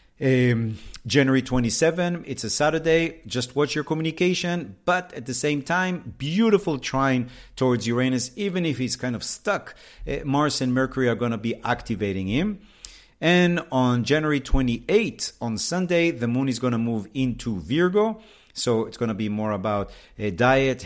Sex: male